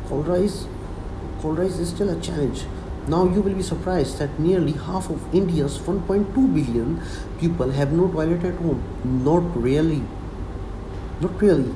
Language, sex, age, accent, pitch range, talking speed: English, male, 50-69, Indian, 95-160 Hz, 145 wpm